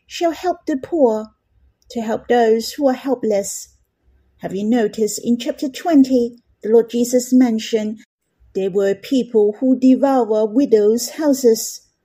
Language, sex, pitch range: Chinese, female, 215-280 Hz